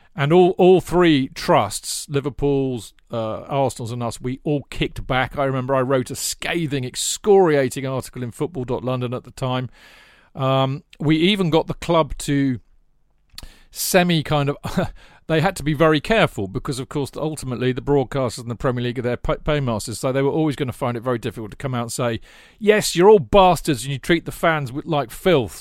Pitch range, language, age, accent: 120-155 Hz, English, 40-59, British